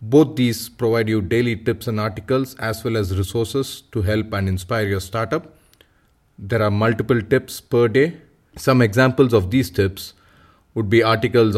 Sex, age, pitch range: male, 30-49, 110-130 Hz